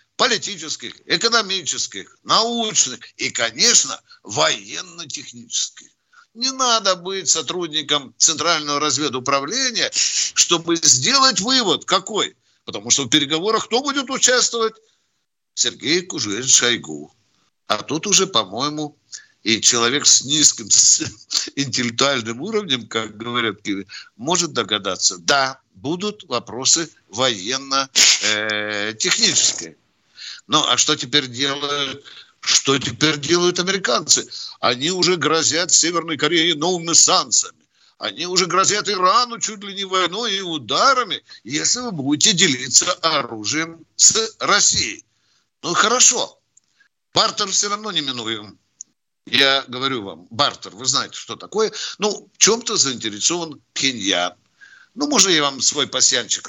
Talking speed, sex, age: 110 wpm, male, 60-79